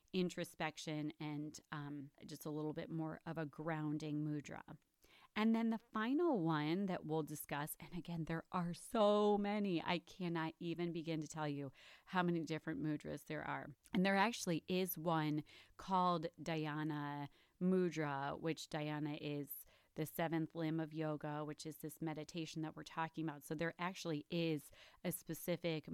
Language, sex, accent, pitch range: English, female, American, 150-175 Hz